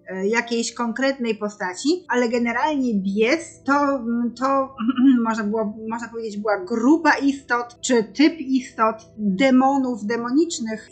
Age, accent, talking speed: 20-39, native, 110 wpm